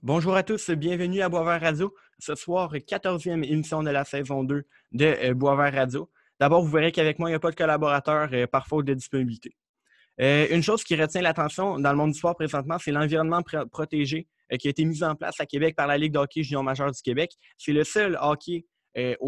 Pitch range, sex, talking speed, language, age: 135-160 Hz, male, 220 wpm, French, 20-39